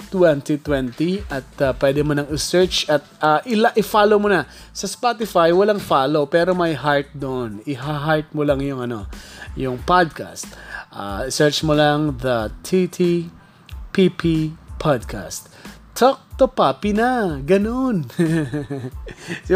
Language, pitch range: Filipino, 135-190 Hz